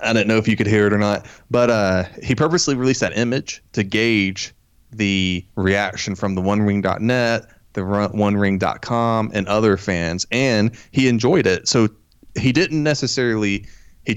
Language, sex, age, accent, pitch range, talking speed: English, male, 20-39, American, 95-120 Hz, 160 wpm